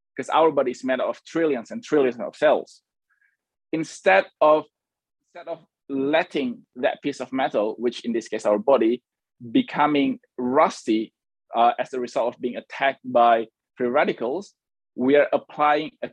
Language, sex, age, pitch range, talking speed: English, male, 20-39, 125-170 Hz, 155 wpm